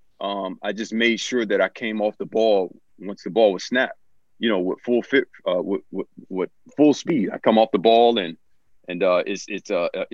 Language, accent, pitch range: English, American, 105-125 Hz